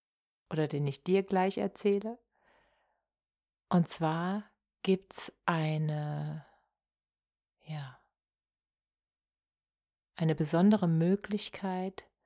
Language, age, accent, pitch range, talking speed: German, 30-49, German, 150-185 Hz, 75 wpm